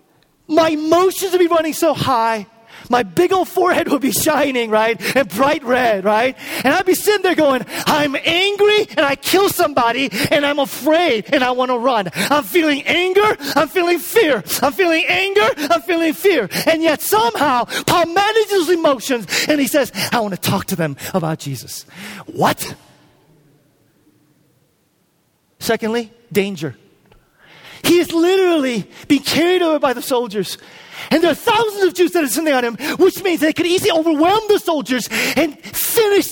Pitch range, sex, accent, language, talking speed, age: 225-345 Hz, male, American, English, 165 wpm, 40-59